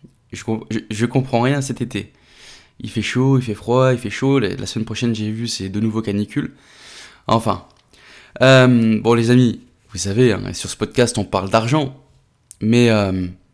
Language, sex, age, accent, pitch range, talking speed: French, male, 20-39, French, 110-135 Hz, 175 wpm